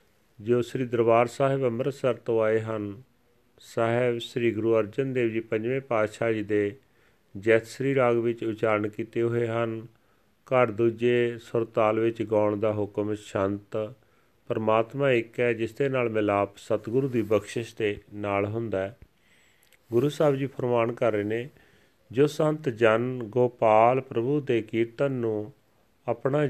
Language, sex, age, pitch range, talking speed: Punjabi, male, 40-59, 110-130 Hz, 145 wpm